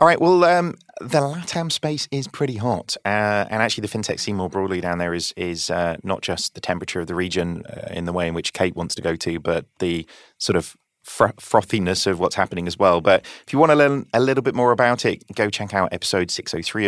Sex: male